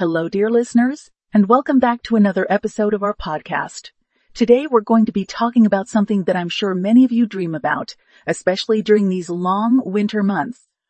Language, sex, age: English, female, 40-59